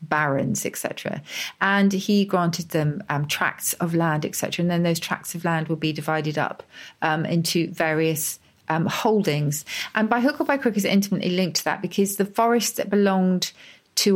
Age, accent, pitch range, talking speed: 40-59, British, 160-200 Hz, 180 wpm